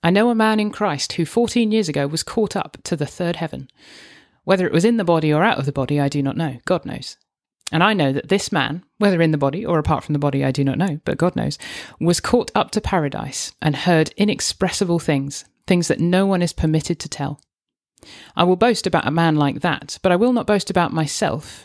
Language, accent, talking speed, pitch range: English, British, 245 wpm, 150-190 Hz